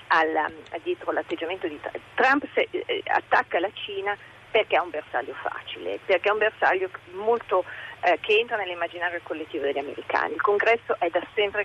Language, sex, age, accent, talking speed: Italian, female, 40-59, native, 155 wpm